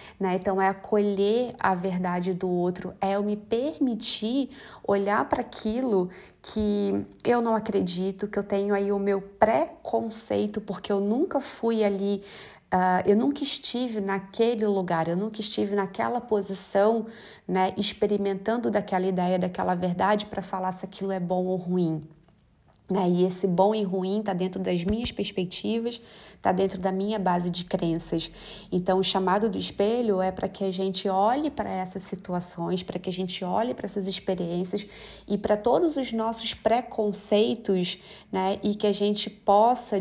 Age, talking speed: 20-39, 160 wpm